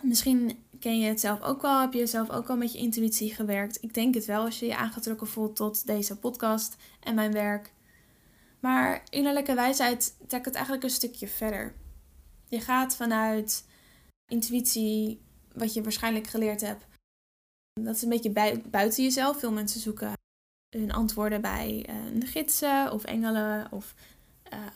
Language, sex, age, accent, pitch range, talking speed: Dutch, female, 10-29, Dutch, 215-250 Hz, 160 wpm